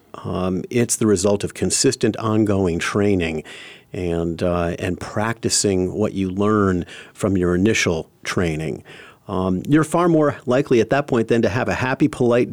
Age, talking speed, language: 50-69, 160 wpm, English